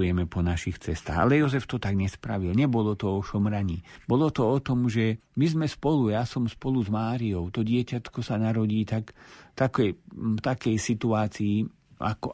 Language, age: Slovak, 50-69